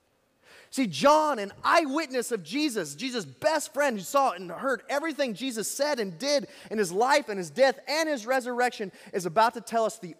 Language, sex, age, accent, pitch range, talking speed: English, male, 30-49, American, 150-230 Hz, 195 wpm